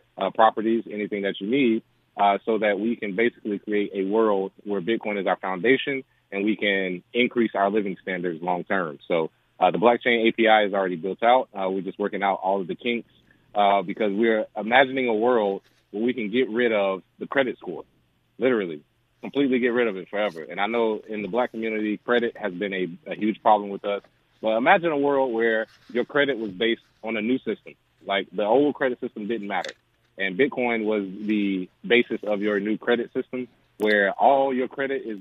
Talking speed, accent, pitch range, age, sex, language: 205 wpm, American, 100-120 Hz, 30-49, male, English